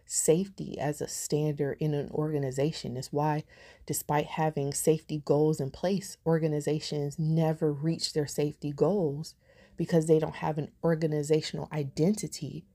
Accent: American